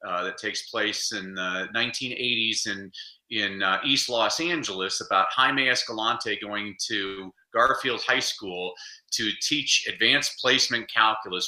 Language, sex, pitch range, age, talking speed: English, male, 110-135 Hz, 30-49, 140 wpm